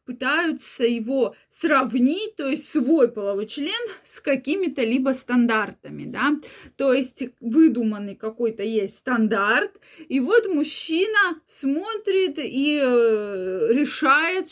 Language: Russian